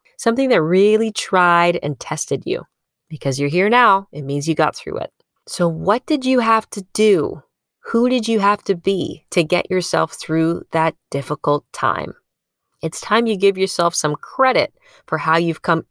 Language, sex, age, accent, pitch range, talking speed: English, female, 20-39, American, 155-200 Hz, 180 wpm